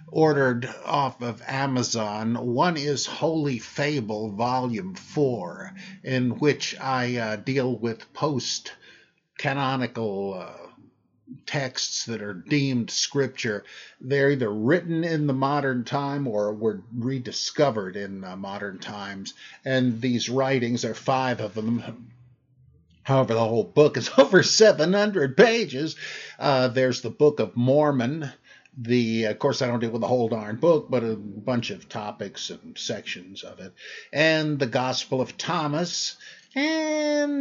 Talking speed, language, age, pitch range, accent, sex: 135 wpm, English, 50-69, 115-150 Hz, American, male